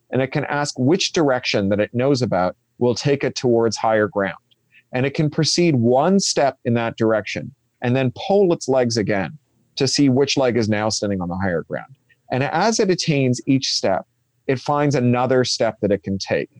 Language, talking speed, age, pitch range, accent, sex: English, 205 wpm, 40-59, 110-140 Hz, American, male